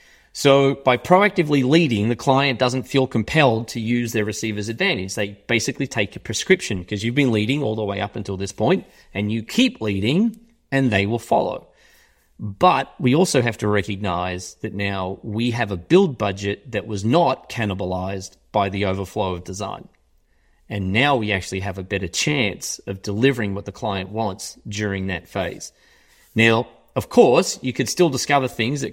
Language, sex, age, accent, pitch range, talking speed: English, male, 30-49, Australian, 105-135 Hz, 180 wpm